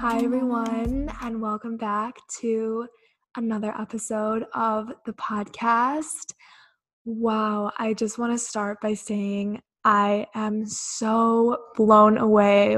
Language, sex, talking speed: English, female, 115 wpm